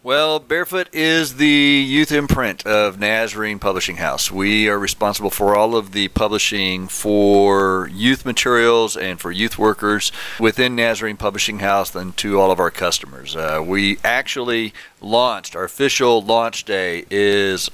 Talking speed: 150 wpm